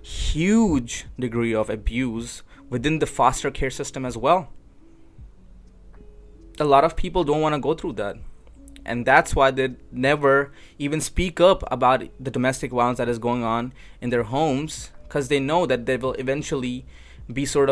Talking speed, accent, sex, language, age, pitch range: 165 wpm, Indian, male, English, 20-39, 115-145 Hz